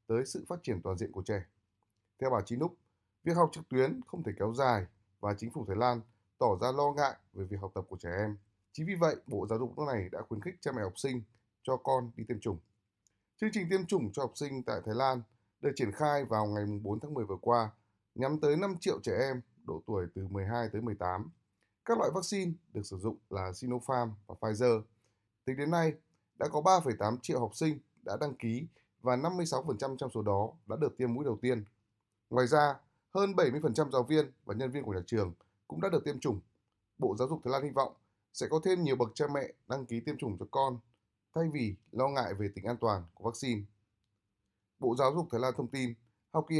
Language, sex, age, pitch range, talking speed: Vietnamese, male, 20-39, 105-145 Hz, 230 wpm